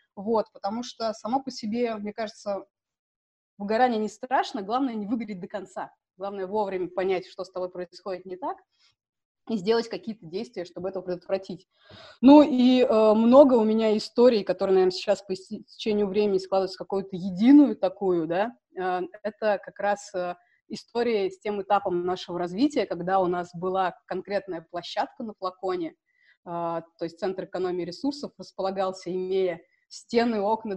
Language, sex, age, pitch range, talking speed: Russian, female, 20-39, 180-220 Hz, 150 wpm